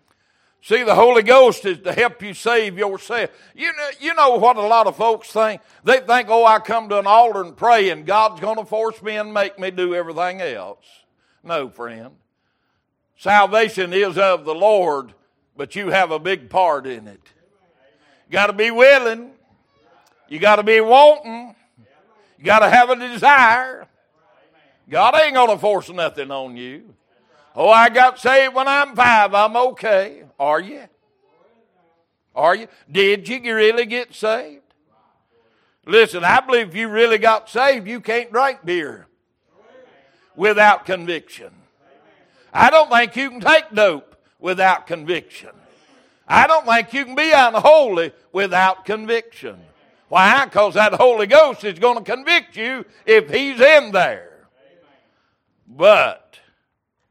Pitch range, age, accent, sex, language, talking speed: 190-255 Hz, 60-79, American, male, English, 150 wpm